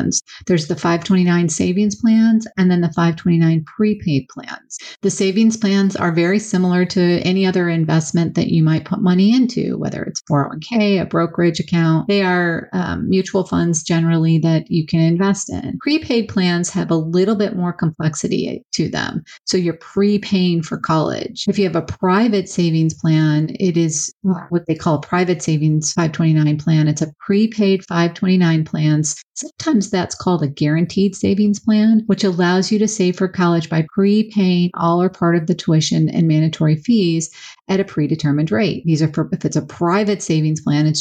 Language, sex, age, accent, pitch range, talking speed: English, female, 30-49, American, 160-195 Hz, 175 wpm